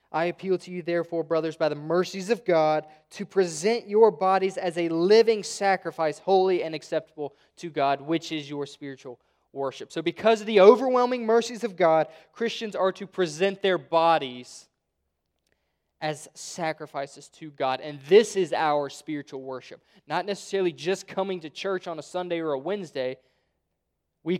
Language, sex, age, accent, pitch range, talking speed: English, male, 20-39, American, 145-185 Hz, 160 wpm